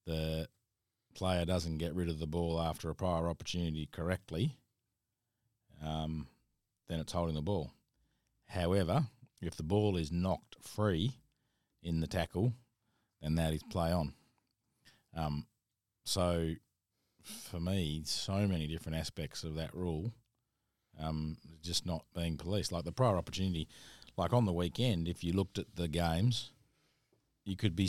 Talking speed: 145 wpm